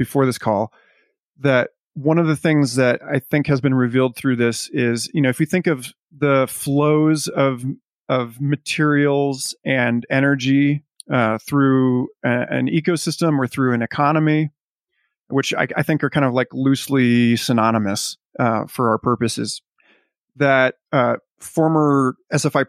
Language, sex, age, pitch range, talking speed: English, male, 30-49, 120-150 Hz, 150 wpm